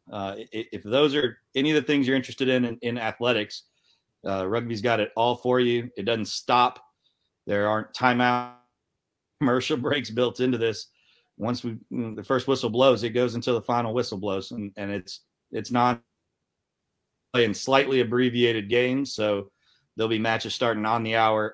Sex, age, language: male, 40-59, English